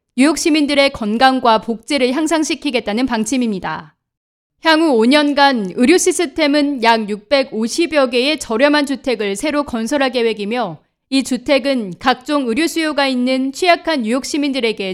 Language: Korean